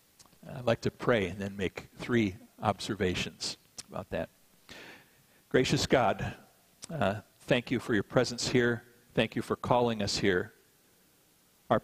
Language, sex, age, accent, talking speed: English, male, 50-69, American, 135 wpm